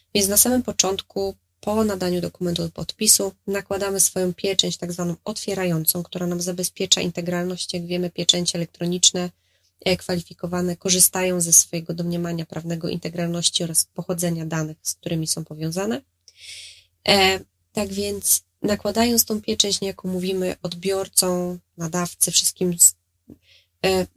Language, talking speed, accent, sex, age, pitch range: Polish, 120 wpm, native, female, 20-39, 160-190 Hz